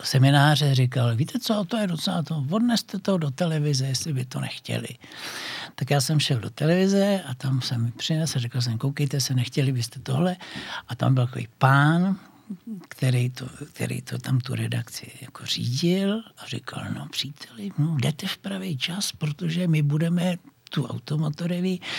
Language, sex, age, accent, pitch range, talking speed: Czech, male, 60-79, native, 130-160 Hz, 170 wpm